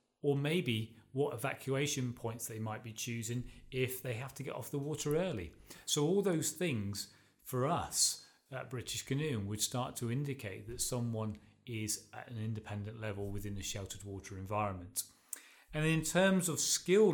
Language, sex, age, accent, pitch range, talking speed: English, male, 30-49, British, 105-130 Hz, 170 wpm